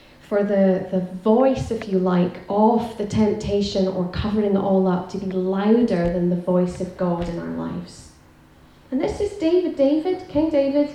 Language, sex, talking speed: English, female, 180 wpm